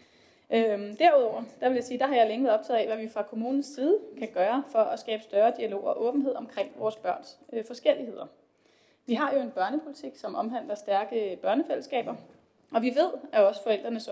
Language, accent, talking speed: Danish, native, 190 wpm